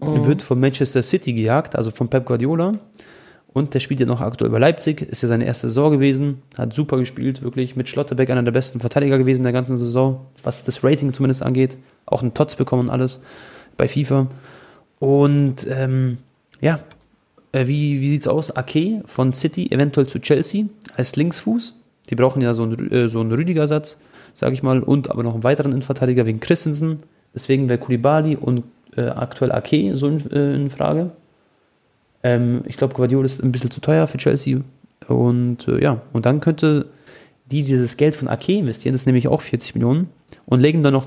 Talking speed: 190 wpm